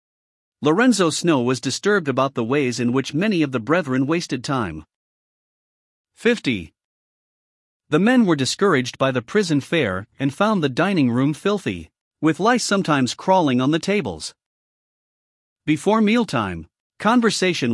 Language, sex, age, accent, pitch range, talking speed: English, male, 50-69, American, 125-185 Hz, 135 wpm